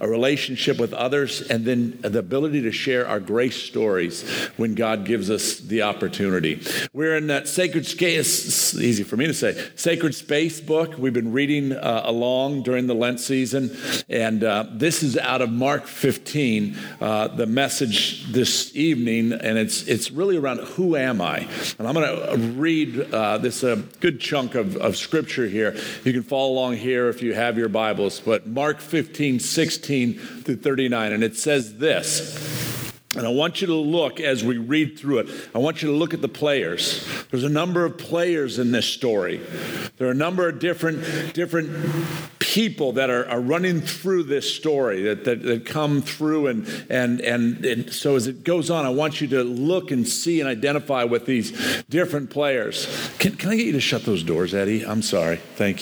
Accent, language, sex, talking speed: American, English, male, 190 wpm